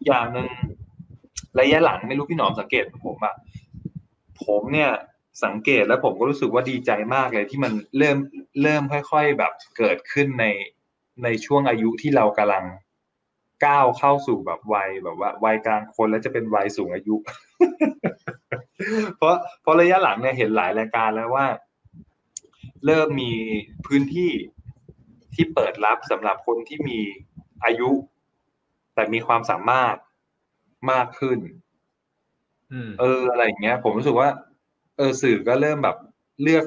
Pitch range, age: 110-145 Hz, 20-39